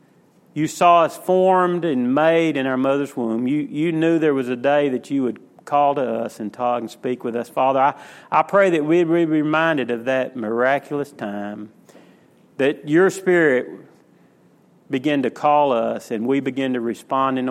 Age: 40-59